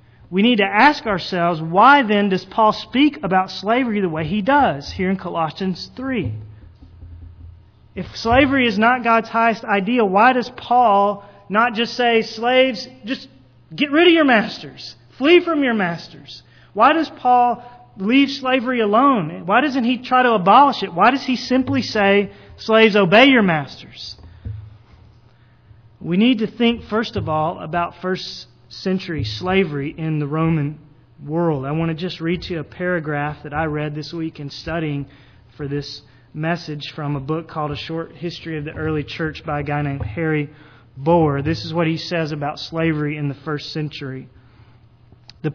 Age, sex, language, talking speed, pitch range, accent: 30-49, male, English, 170 wpm, 145-210 Hz, American